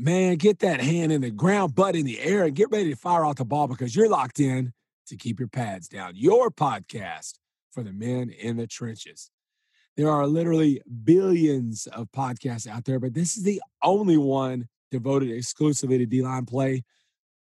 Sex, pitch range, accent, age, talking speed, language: male, 120-150 Hz, American, 30-49, 190 wpm, English